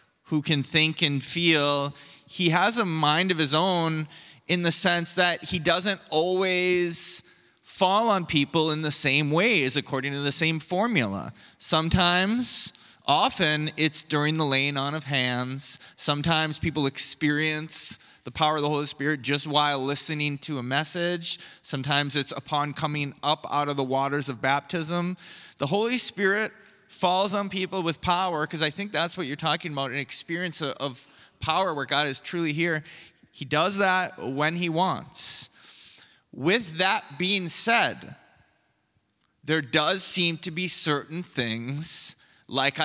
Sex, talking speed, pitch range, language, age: male, 155 wpm, 145-175 Hz, English, 20-39